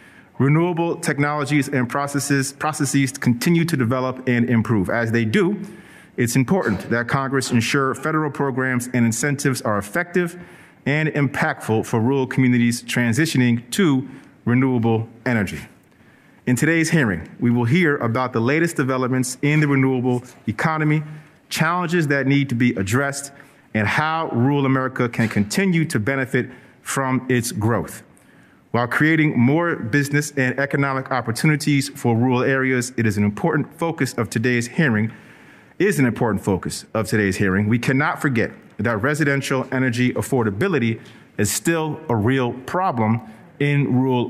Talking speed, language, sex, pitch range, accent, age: 140 wpm, English, male, 120-145 Hz, American, 40-59